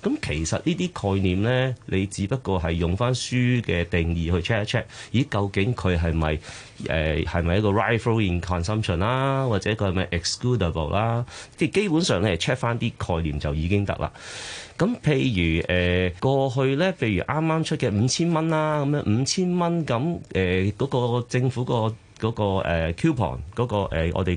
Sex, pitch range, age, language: male, 90-125 Hz, 30-49, Chinese